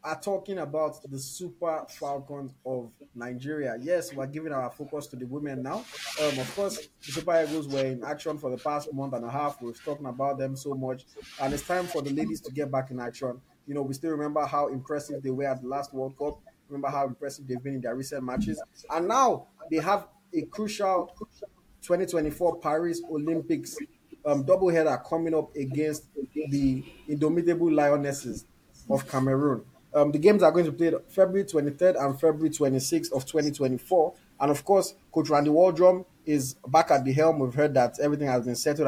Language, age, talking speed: English, 20-39, 190 wpm